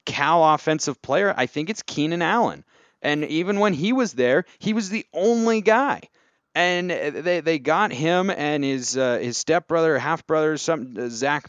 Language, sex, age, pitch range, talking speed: English, male, 30-49, 130-165 Hz, 170 wpm